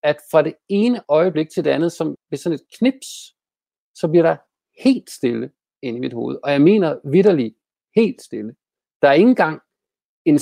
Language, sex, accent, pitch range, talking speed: Danish, male, native, 150-200 Hz, 190 wpm